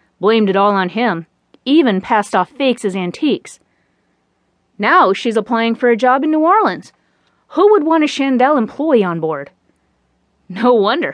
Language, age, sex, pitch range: English, 30-49, female, 195-260 Hz